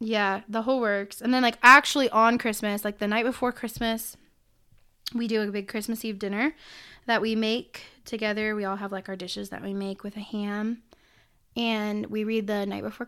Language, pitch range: English, 200-230 Hz